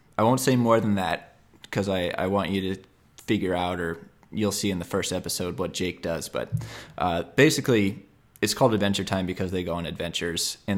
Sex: male